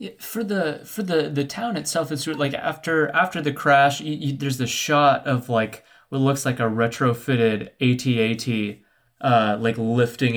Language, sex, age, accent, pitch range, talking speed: English, male, 20-39, American, 115-140 Hz, 170 wpm